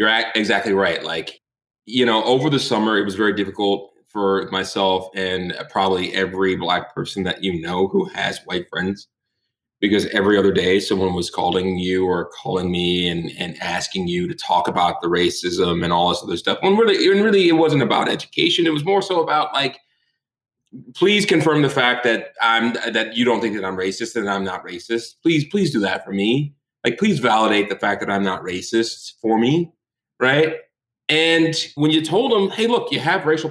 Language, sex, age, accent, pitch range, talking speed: English, male, 30-49, American, 100-140 Hz, 195 wpm